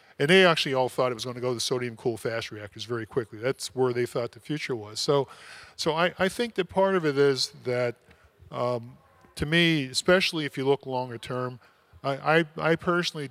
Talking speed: 220 wpm